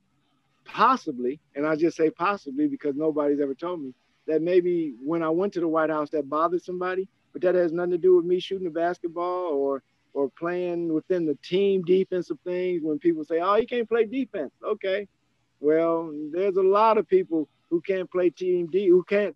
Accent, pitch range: American, 150-180 Hz